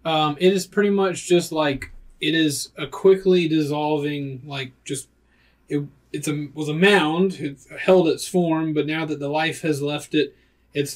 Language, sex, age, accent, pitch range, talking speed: English, male, 30-49, American, 135-160 Hz, 180 wpm